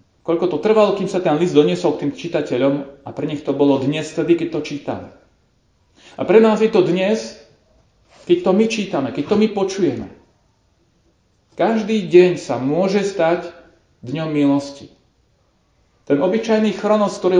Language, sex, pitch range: Slovak, male, 140-195 Hz